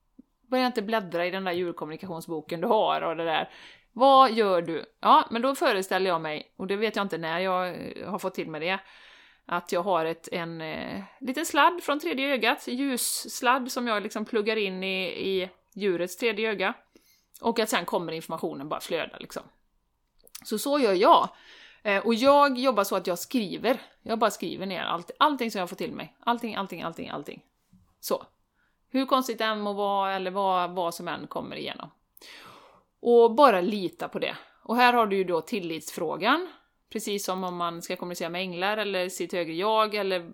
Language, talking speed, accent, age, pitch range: Swedish, 190 wpm, native, 30-49, 175-235 Hz